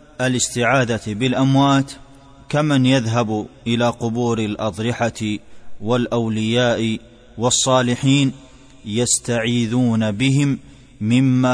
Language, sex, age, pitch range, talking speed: Arabic, male, 20-39, 115-130 Hz, 60 wpm